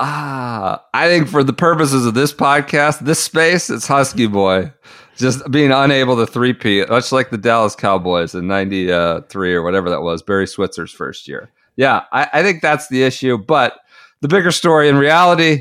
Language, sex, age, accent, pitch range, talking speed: English, male, 40-59, American, 100-155 Hz, 180 wpm